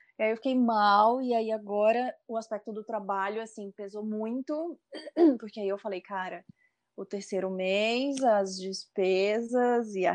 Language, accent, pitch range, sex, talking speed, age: Portuguese, Brazilian, 190-240 Hz, female, 155 wpm, 20-39